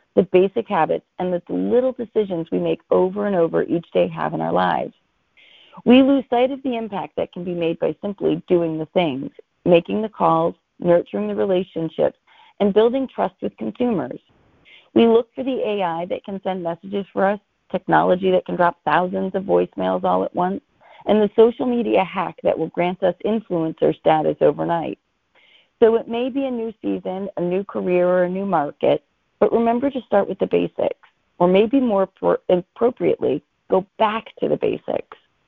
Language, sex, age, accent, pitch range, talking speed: English, female, 40-59, American, 170-230 Hz, 185 wpm